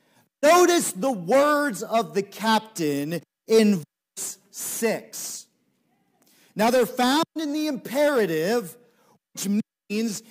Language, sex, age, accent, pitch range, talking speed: English, male, 40-59, American, 200-265 Hz, 100 wpm